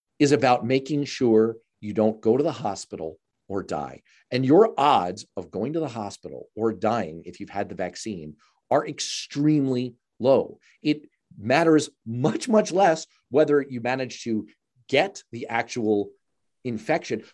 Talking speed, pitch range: 150 wpm, 110-160 Hz